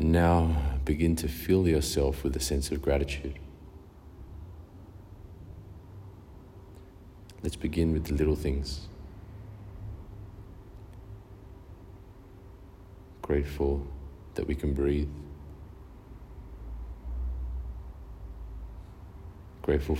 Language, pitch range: English, 70-90 Hz